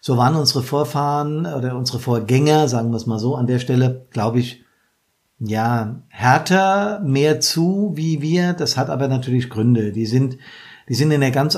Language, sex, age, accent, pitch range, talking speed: German, male, 50-69, German, 125-145 Hz, 180 wpm